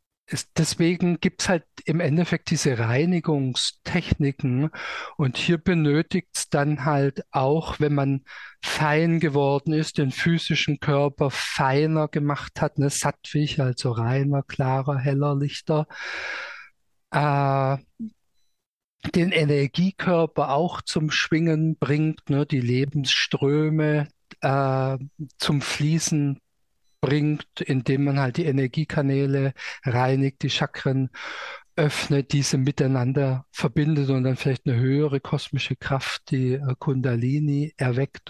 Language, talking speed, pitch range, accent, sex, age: German, 110 wpm, 135-155 Hz, German, male, 50-69